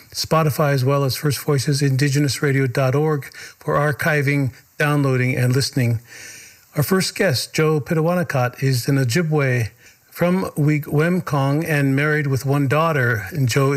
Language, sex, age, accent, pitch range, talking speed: English, male, 50-69, American, 130-155 Hz, 125 wpm